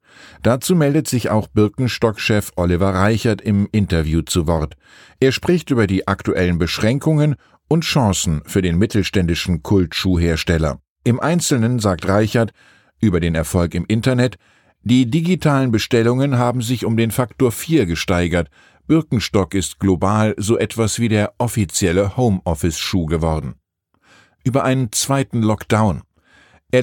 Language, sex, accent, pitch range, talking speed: German, male, German, 95-125 Hz, 130 wpm